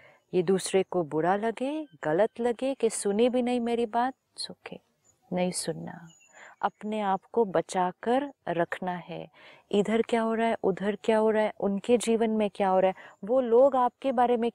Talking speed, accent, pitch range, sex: 180 wpm, native, 175-215 Hz, female